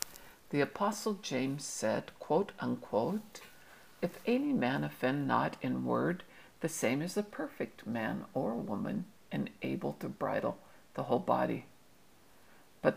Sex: female